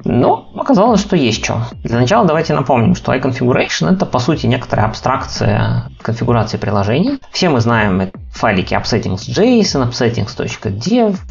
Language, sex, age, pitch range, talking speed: Russian, male, 20-39, 105-135 Hz, 125 wpm